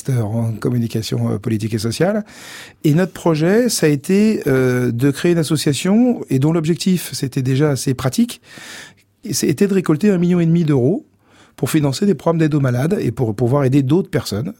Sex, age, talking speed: male, 40-59, 185 wpm